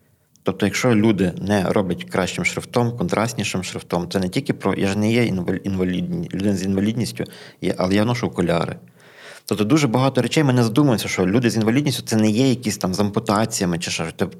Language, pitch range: Ukrainian, 95-120 Hz